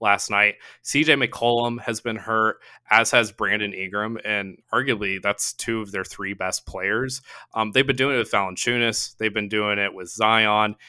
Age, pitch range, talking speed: 20-39, 100-115 Hz, 180 wpm